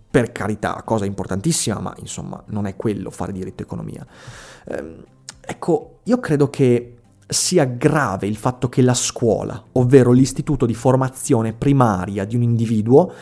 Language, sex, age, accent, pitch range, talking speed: Italian, male, 30-49, native, 110-140 Hz, 140 wpm